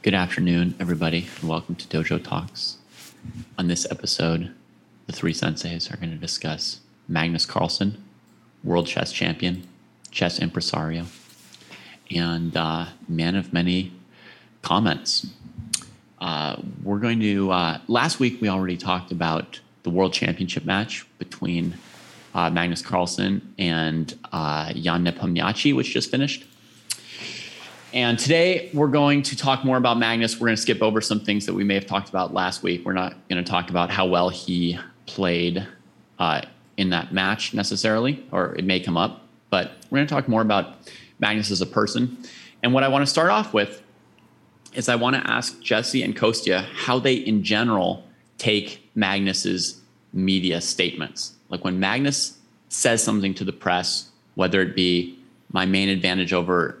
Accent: American